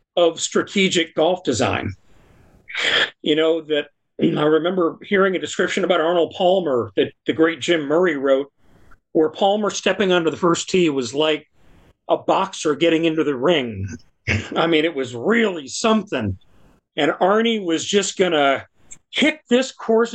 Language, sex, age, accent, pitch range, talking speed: English, male, 40-59, American, 145-195 Hz, 150 wpm